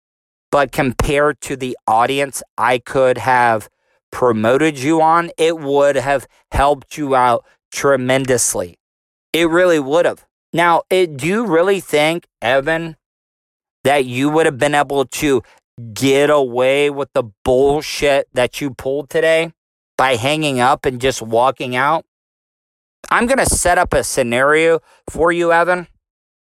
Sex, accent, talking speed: male, American, 140 wpm